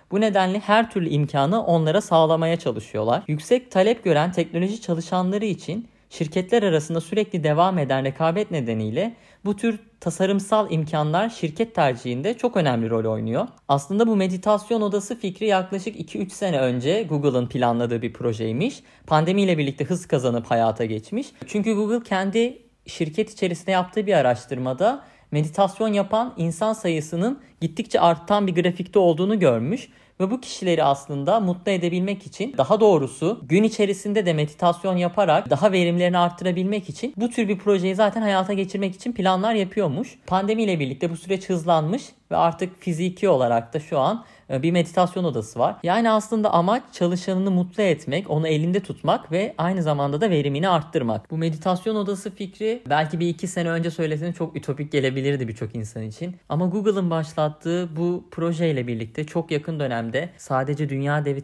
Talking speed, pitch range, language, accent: 155 wpm, 150-200 Hz, Turkish, native